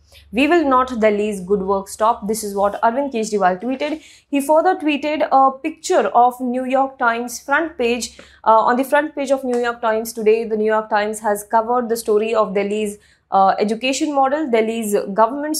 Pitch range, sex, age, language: 220-275 Hz, female, 20-39, English